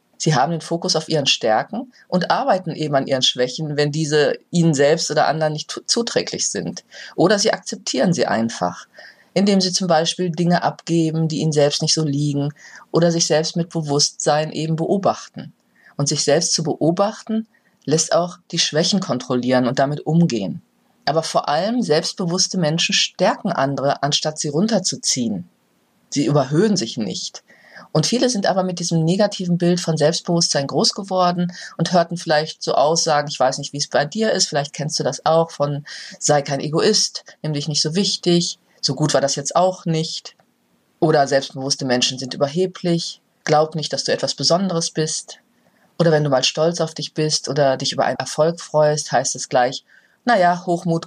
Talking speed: 175 wpm